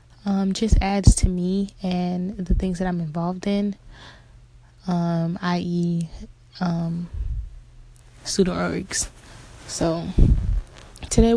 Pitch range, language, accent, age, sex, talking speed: 170-195 Hz, English, American, 20-39, female, 100 wpm